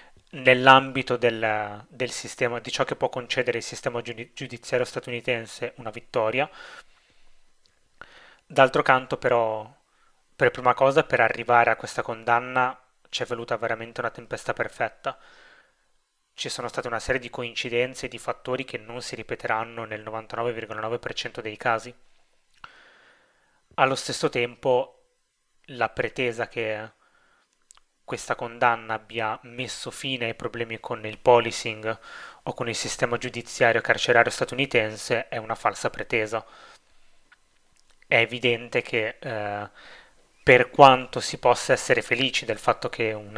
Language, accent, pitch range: Italian, native, 115-125 Hz